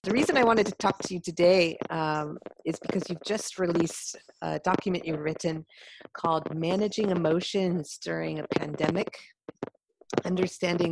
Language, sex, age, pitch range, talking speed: English, female, 40-59, 165-200 Hz, 145 wpm